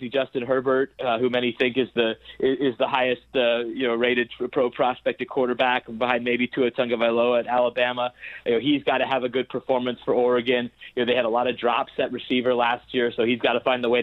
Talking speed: 245 wpm